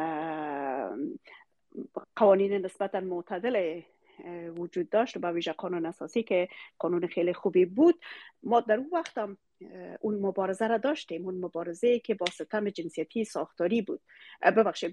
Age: 40-59